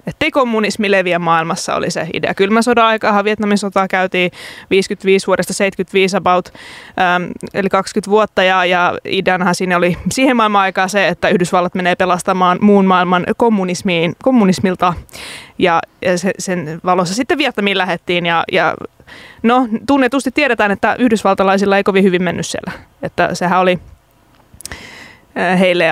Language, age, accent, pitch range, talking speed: Finnish, 20-39, native, 175-210 Hz, 140 wpm